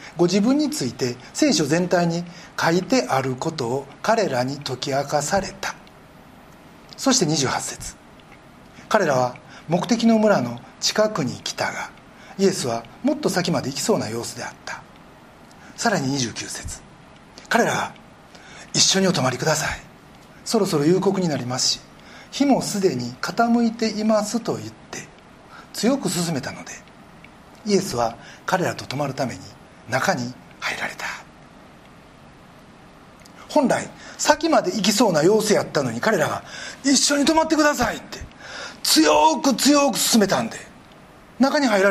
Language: Japanese